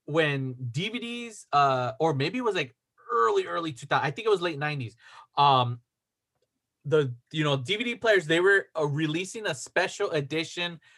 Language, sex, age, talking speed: English, male, 30-49, 170 wpm